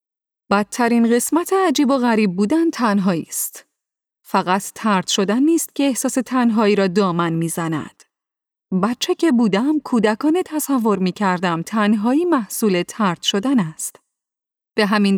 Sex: female